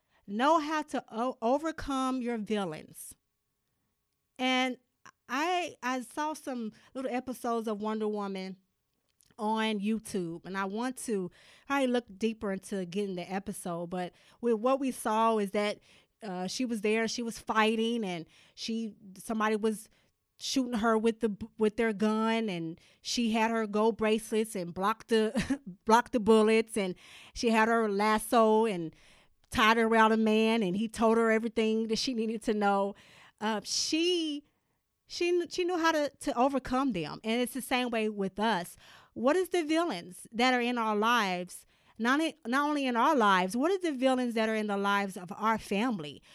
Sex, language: female, English